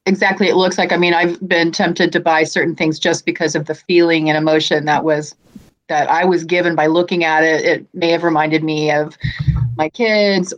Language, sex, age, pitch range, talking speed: English, female, 30-49, 155-180 Hz, 215 wpm